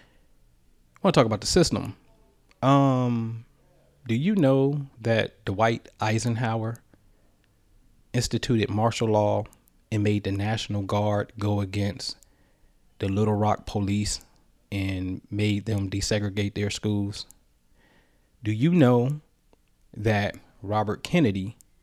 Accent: American